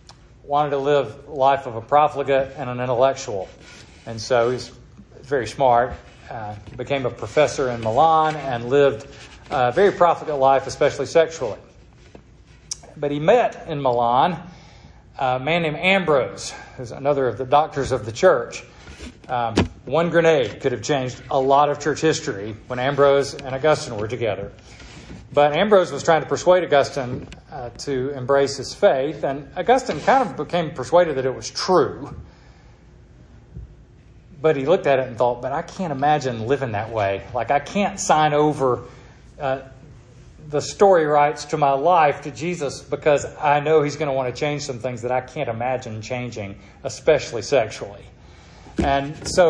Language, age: English, 40-59